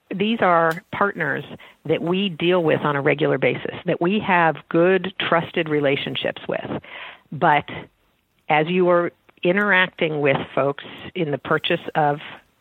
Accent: American